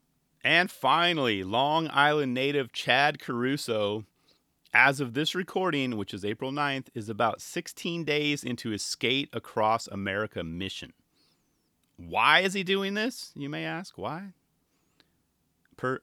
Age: 30-49